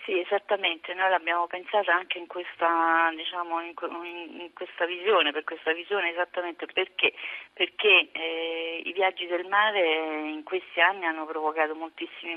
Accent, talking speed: native, 95 wpm